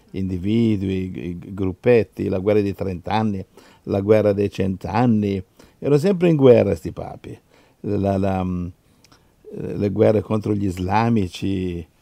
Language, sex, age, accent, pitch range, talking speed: Italian, male, 50-69, native, 90-110 Hz, 120 wpm